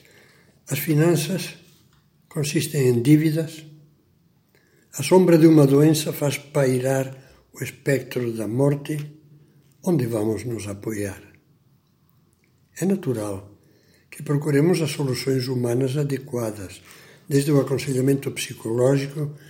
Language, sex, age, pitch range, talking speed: Portuguese, male, 60-79, 115-150 Hz, 100 wpm